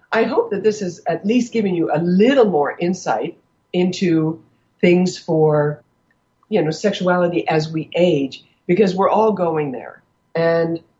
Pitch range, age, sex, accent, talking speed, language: 155-195 Hz, 60-79, female, American, 155 wpm, English